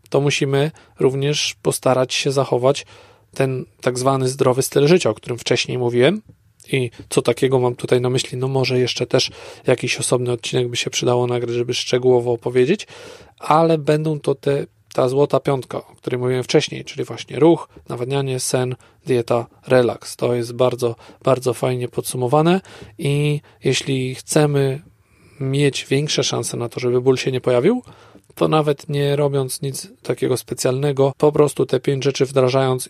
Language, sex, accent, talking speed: Polish, male, native, 155 wpm